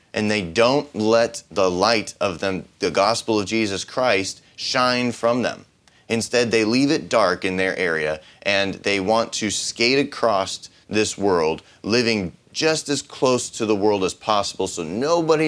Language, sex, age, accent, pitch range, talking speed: English, male, 30-49, American, 95-120 Hz, 165 wpm